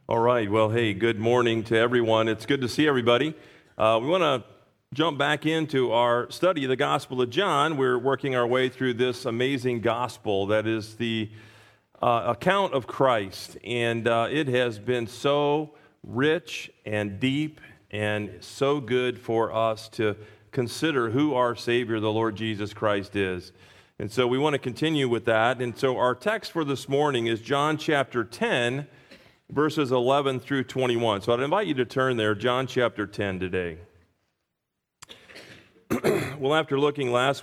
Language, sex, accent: English, male, American